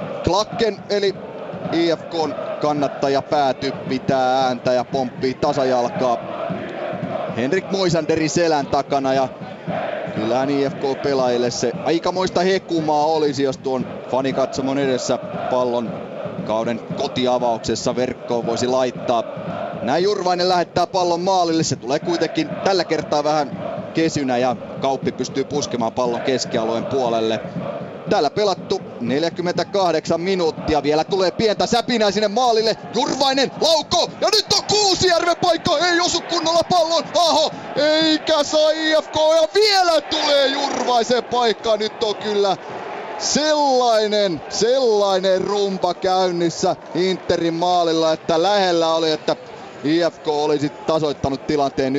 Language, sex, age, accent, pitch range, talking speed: Finnish, male, 30-49, native, 135-210 Hz, 110 wpm